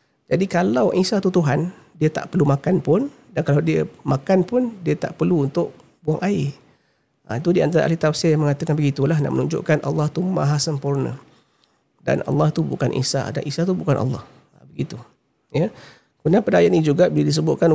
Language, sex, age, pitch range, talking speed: Malay, male, 40-59, 135-165 Hz, 185 wpm